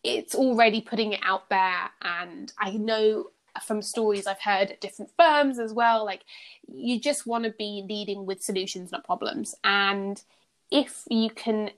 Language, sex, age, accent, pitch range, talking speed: English, female, 20-39, British, 195-225 Hz, 170 wpm